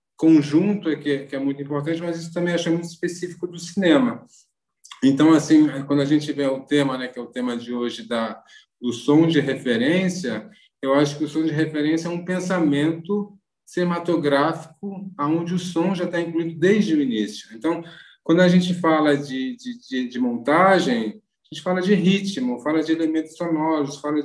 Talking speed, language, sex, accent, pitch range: 185 wpm, Portuguese, male, Brazilian, 145-180 Hz